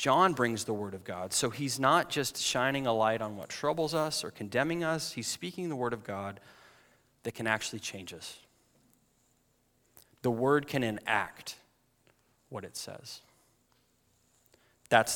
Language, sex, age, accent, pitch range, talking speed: English, male, 30-49, American, 105-130 Hz, 155 wpm